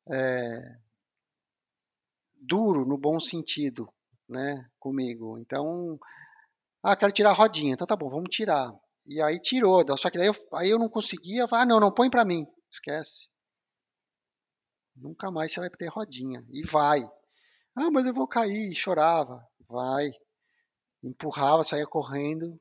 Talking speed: 135 wpm